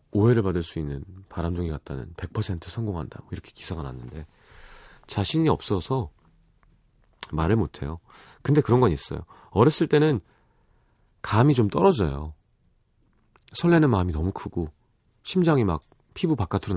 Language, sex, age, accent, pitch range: Korean, male, 40-59, native, 90-135 Hz